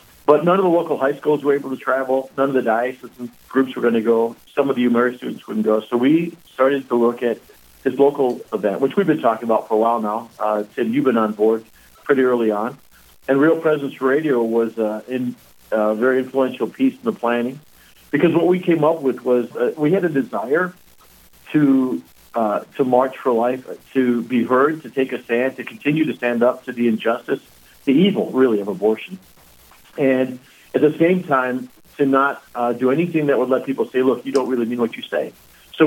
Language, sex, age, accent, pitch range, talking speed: English, male, 50-69, American, 115-135 Hz, 220 wpm